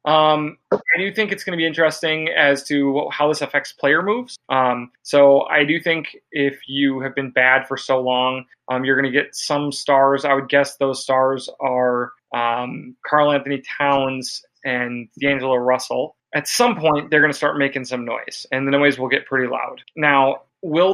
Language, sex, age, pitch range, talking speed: English, male, 30-49, 125-145 Hz, 195 wpm